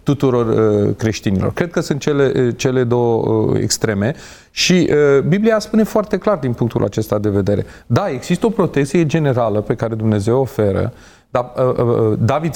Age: 30-49